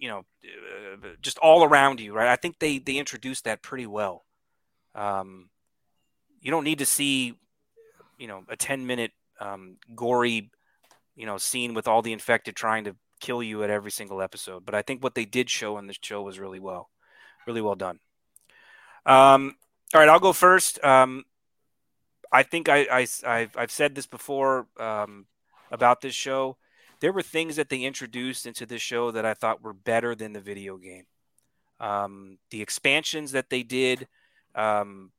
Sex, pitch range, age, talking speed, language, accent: male, 110-135 Hz, 30-49, 175 wpm, English, American